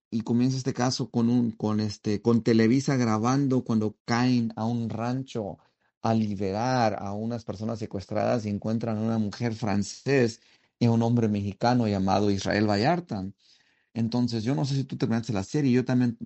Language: English